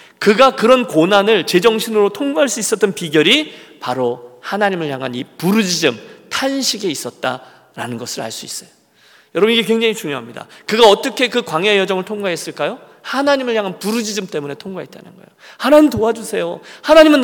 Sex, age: male, 40-59